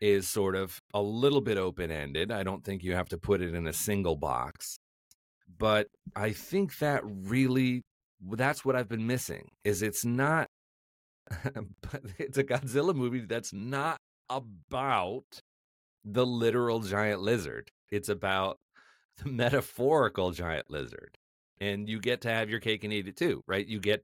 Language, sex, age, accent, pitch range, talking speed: English, male, 40-59, American, 90-115 Hz, 155 wpm